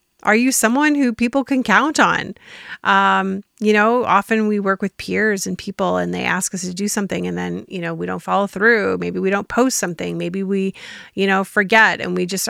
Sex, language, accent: female, English, American